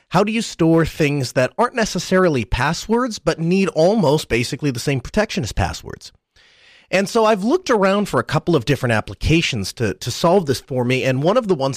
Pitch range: 125-170 Hz